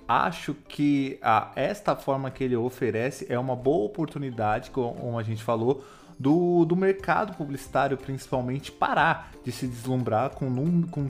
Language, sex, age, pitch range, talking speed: Portuguese, male, 20-39, 120-145 Hz, 145 wpm